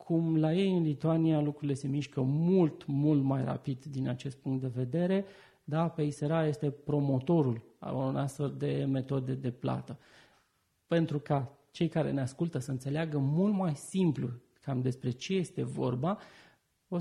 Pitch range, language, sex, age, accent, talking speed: 140-180 Hz, Romanian, male, 30-49, native, 160 wpm